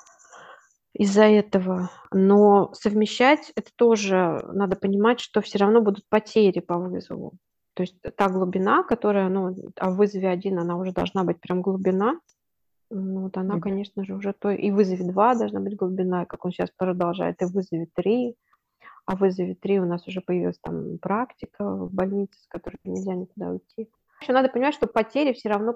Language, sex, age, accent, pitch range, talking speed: Russian, female, 20-39, native, 190-220 Hz, 180 wpm